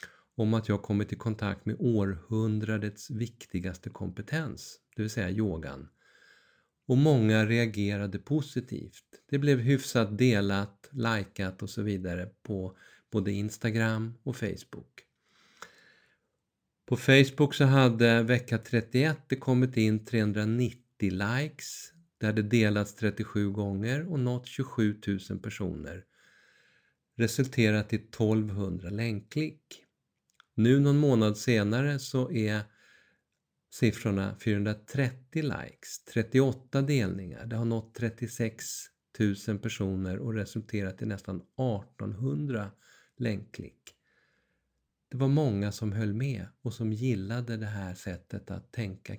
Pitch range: 105-125 Hz